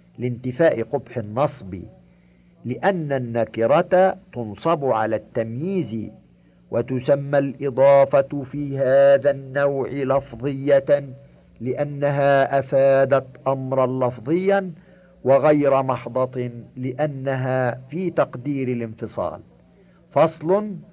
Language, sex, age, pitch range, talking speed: Arabic, male, 50-69, 120-165 Hz, 70 wpm